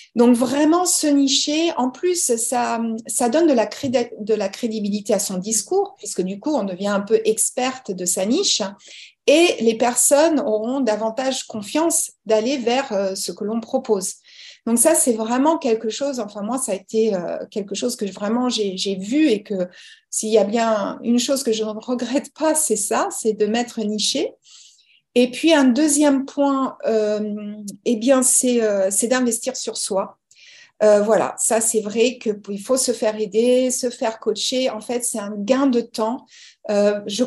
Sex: female